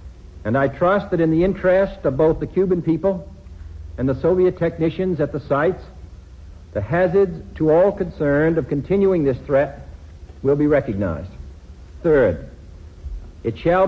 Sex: male